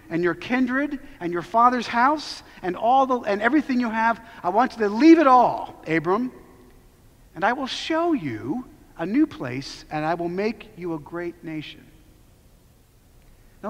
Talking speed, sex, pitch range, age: 170 wpm, male, 185-280 Hz, 40-59